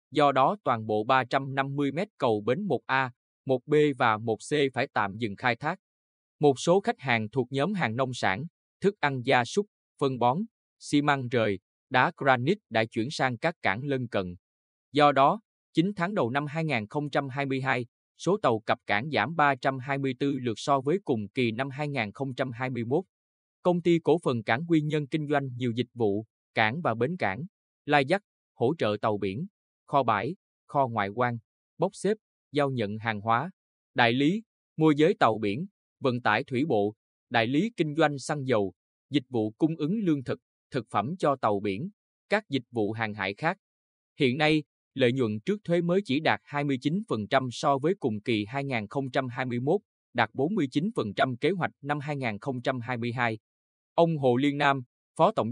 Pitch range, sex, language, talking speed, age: 115-150 Hz, male, Vietnamese, 170 wpm, 20-39